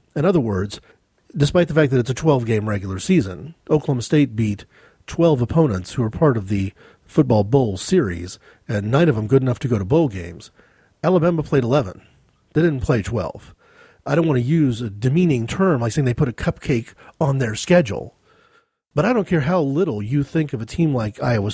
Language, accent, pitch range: English, American, 110-155 Hz